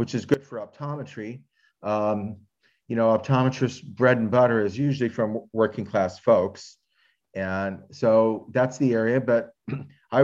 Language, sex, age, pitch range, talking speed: English, male, 40-59, 115-135 Hz, 145 wpm